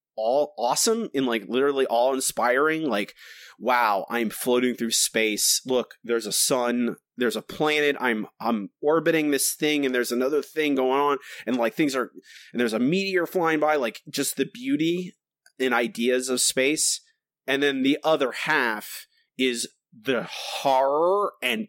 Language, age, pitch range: English, 30-49, 135-205 Hz